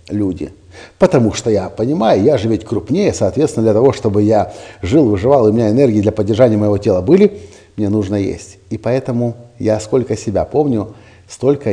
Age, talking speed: 50-69, 175 wpm